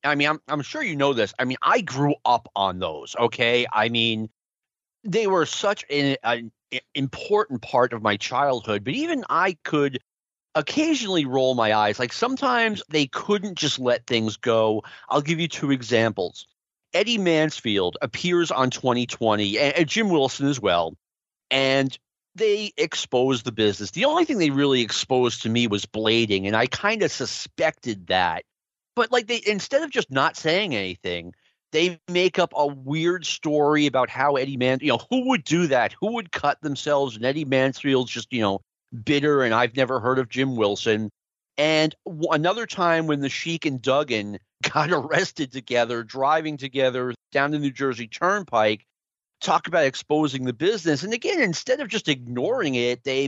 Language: English